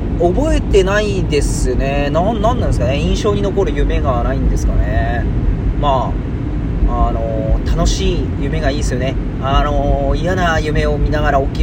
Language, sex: Japanese, male